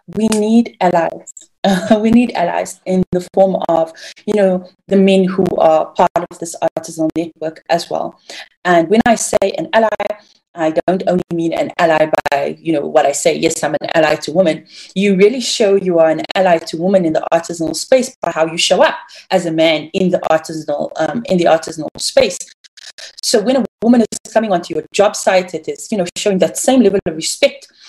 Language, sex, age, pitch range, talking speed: English, female, 30-49, 165-210 Hz, 210 wpm